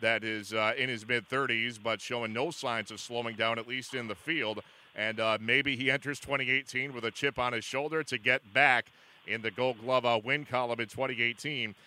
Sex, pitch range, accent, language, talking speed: male, 115-140 Hz, American, English, 215 wpm